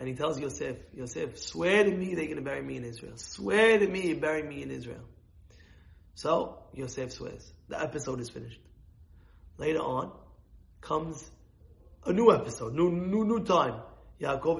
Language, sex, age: English, male, 30-49